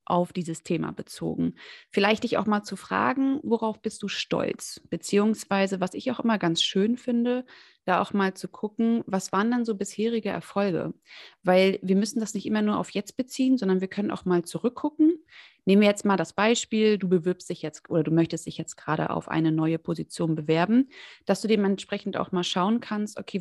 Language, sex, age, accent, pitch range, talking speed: German, female, 30-49, German, 185-230 Hz, 200 wpm